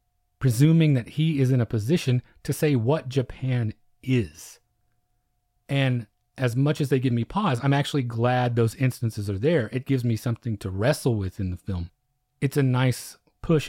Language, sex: English, male